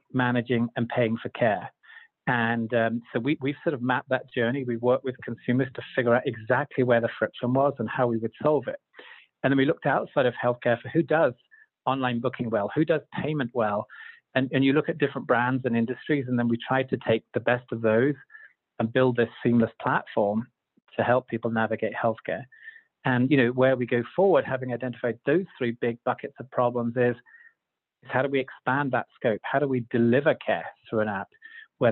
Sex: male